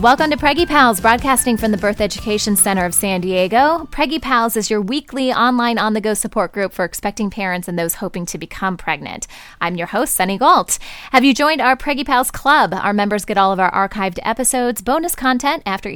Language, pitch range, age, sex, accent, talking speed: English, 180-240 Hz, 10-29, female, American, 210 wpm